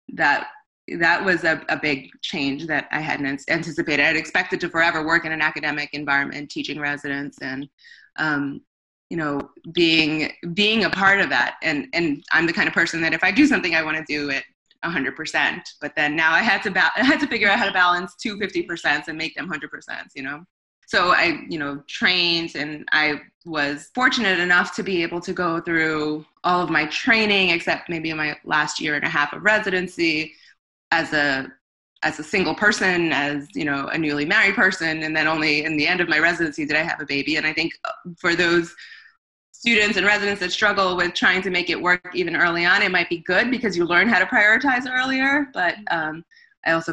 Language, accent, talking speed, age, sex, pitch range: English, American, 210 wpm, 20-39, female, 150-185 Hz